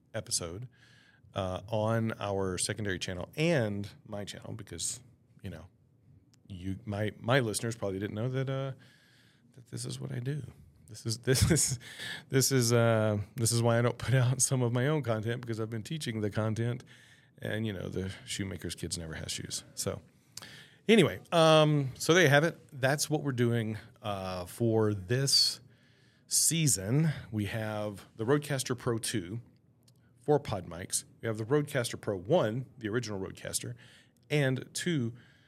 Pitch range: 105-130 Hz